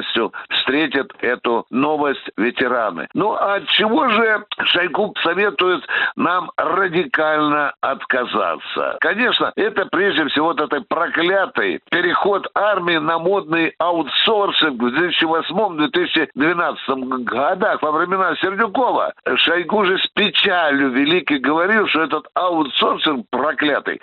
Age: 60-79